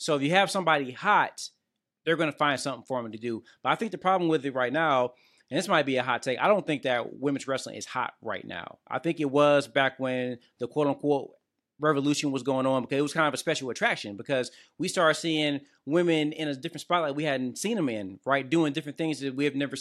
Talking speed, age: 250 wpm, 20-39